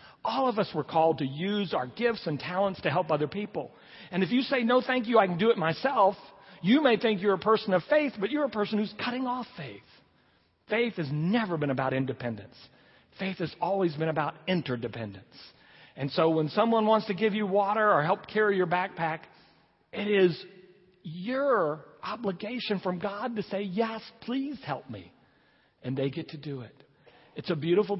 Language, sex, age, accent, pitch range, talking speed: English, male, 40-59, American, 140-200 Hz, 195 wpm